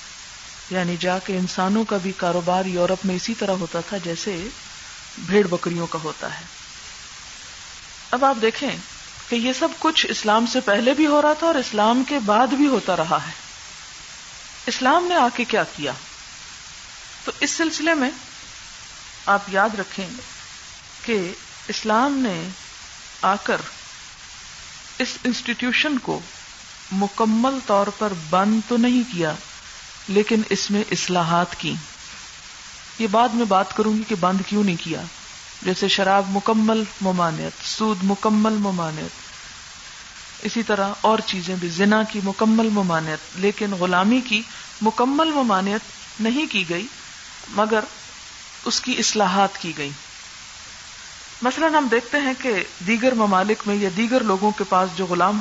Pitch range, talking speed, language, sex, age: 190-235 Hz, 140 wpm, Urdu, female, 50-69